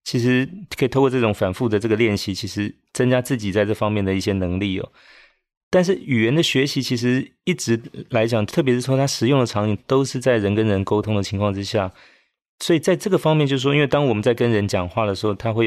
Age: 30-49